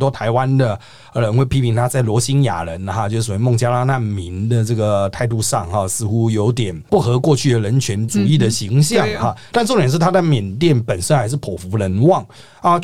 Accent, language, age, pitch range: native, Chinese, 30-49, 105-140 Hz